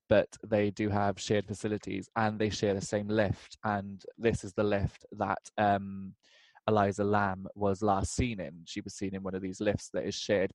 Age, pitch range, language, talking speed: 20-39, 95-105 Hz, English, 205 wpm